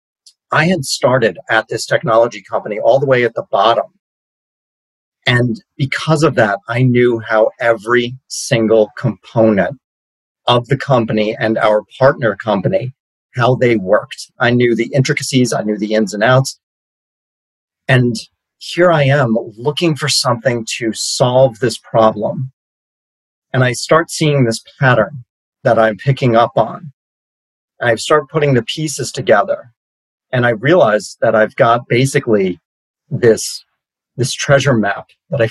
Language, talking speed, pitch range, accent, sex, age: English, 140 wpm, 110-140 Hz, American, male, 30-49